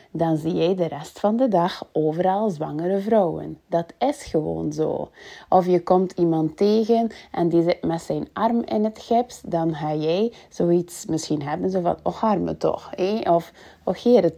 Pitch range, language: 160-225 Hz, Dutch